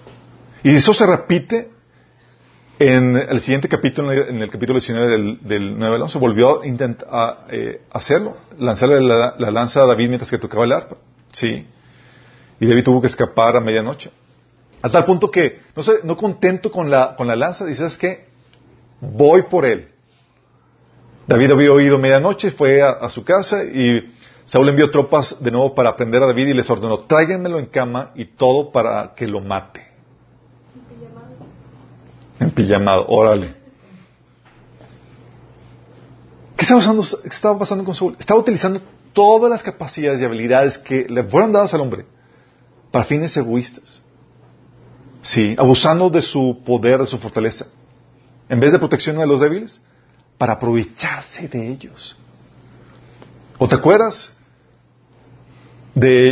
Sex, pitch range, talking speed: male, 120-155 Hz, 145 wpm